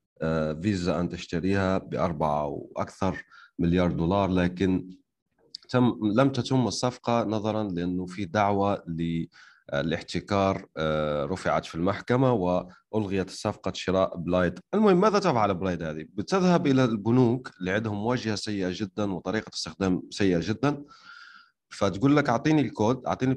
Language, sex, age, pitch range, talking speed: Arabic, male, 30-49, 95-130 Hz, 120 wpm